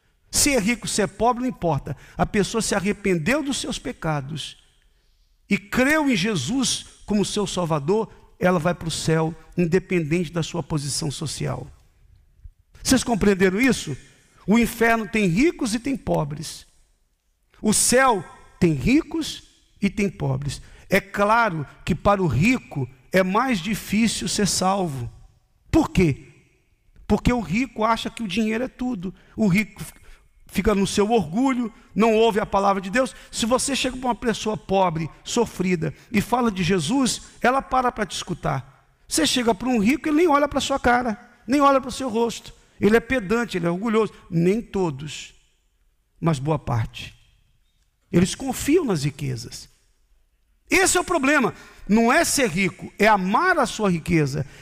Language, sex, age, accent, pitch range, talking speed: Portuguese, male, 50-69, Brazilian, 160-240 Hz, 160 wpm